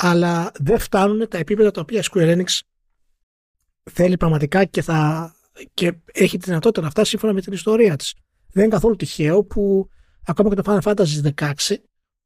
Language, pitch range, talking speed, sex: Greek, 160-210 Hz, 170 wpm, male